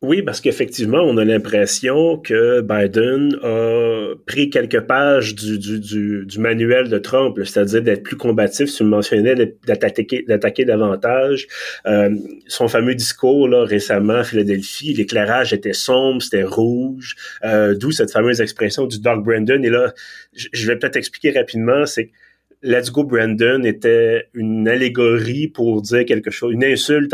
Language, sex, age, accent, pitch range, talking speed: French, male, 30-49, Canadian, 105-125 Hz, 155 wpm